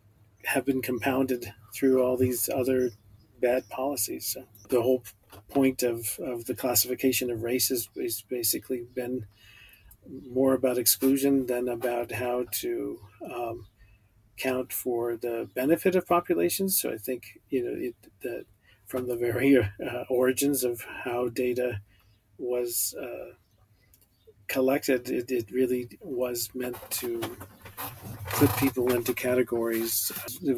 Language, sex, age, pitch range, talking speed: English, male, 40-59, 110-130 Hz, 130 wpm